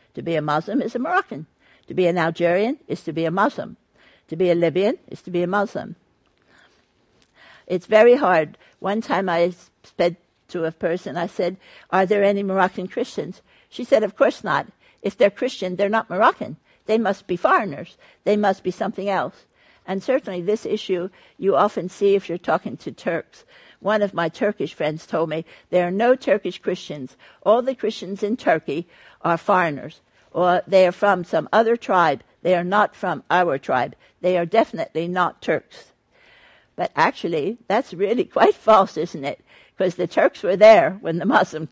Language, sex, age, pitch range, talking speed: English, female, 60-79, 175-220 Hz, 185 wpm